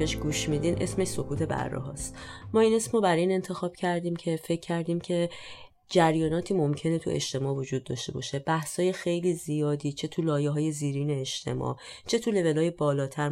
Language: Persian